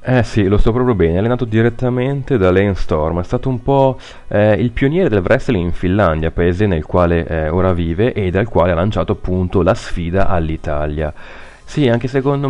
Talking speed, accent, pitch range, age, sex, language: 195 wpm, native, 85-110 Hz, 30-49, male, Italian